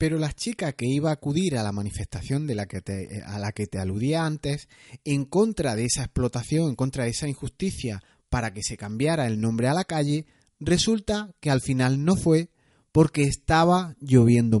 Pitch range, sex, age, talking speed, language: 120-175 Hz, male, 30-49, 195 wpm, Spanish